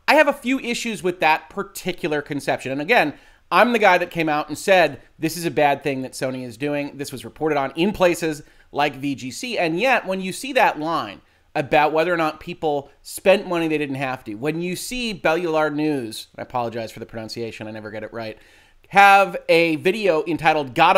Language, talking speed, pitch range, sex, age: English, 215 wpm, 140-180 Hz, male, 30-49